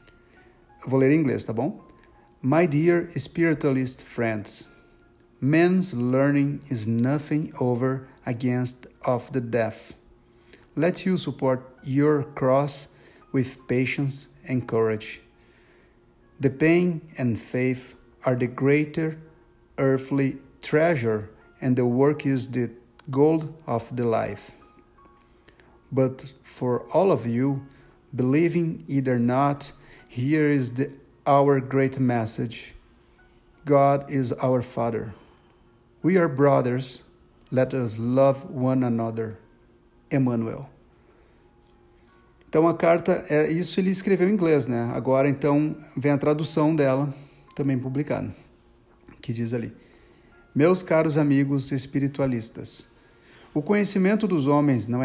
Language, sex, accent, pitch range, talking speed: Portuguese, male, Brazilian, 120-150 Hz, 110 wpm